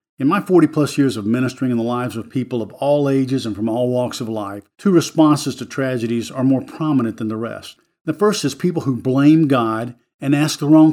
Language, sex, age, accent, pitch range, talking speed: English, male, 50-69, American, 125-145 Hz, 225 wpm